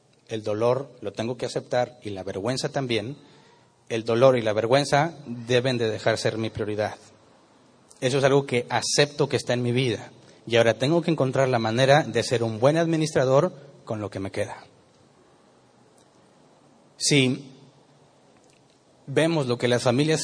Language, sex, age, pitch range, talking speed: Spanish, male, 30-49, 120-140 Hz, 160 wpm